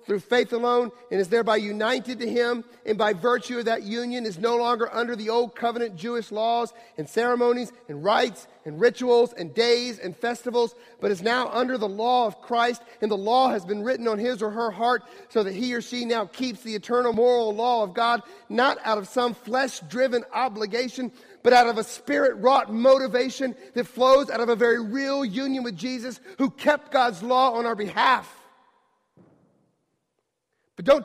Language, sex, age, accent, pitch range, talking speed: English, male, 40-59, American, 210-245 Hz, 190 wpm